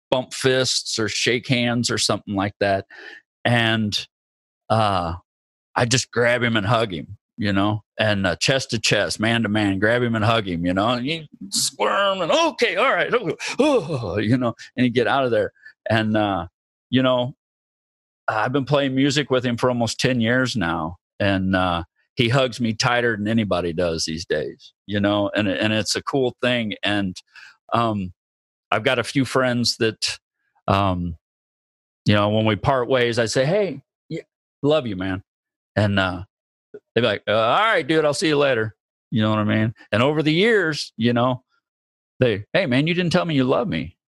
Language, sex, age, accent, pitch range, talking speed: English, male, 40-59, American, 100-135 Hz, 190 wpm